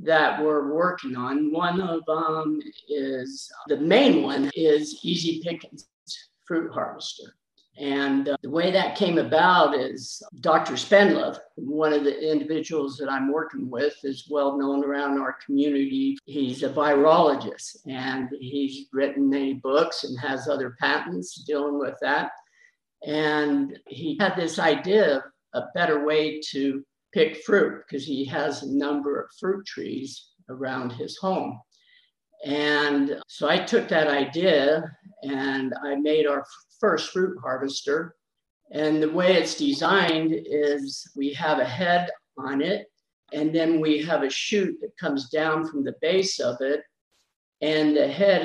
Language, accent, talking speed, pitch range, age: English, American, 150 wpm, 140-165 Hz, 50-69